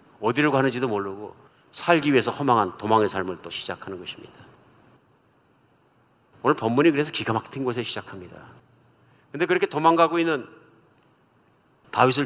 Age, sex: 50-69, male